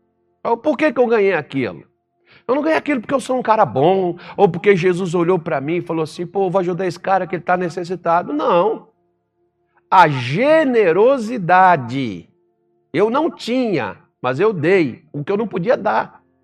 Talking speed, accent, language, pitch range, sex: 175 wpm, Brazilian, Portuguese, 120-185 Hz, male